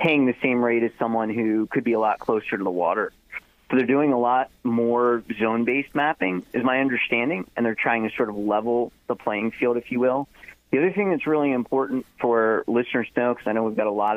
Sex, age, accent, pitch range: male, 40-59, American, 105-120 Hz